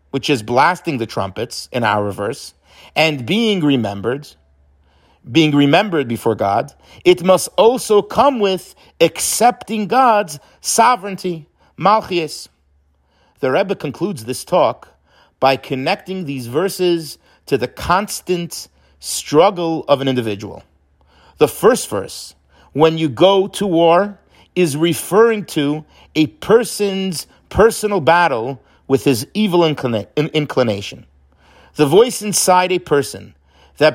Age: 50-69